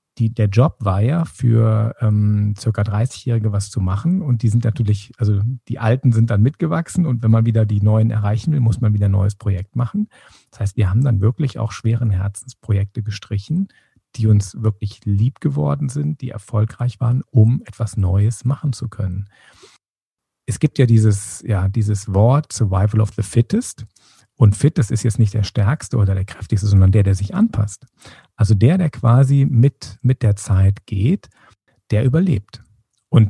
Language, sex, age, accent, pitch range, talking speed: German, male, 50-69, German, 105-130 Hz, 180 wpm